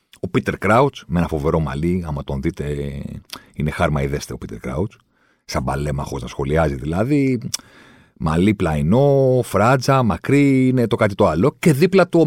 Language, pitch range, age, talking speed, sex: Greek, 75-115 Hz, 50-69, 165 wpm, male